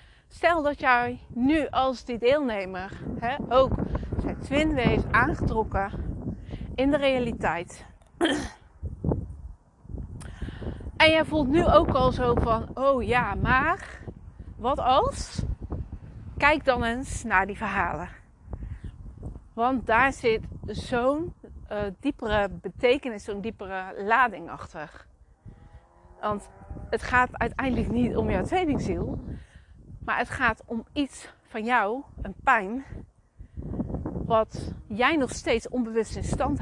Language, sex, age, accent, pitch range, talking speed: Dutch, female, 40-59, Dutch, 205-270 Hz, 115 wpm